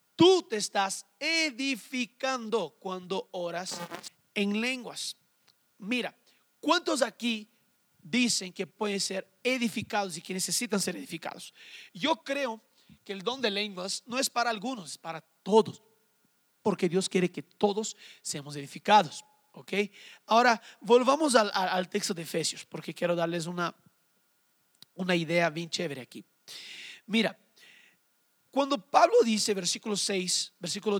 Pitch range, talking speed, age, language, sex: 180-240 Hz, 130 wpm, 40-59, Spanish, male